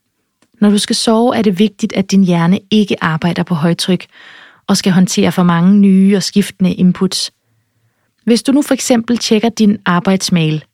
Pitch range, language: 175-220 Hz, Danish